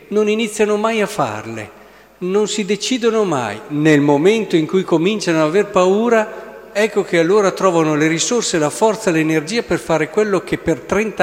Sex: male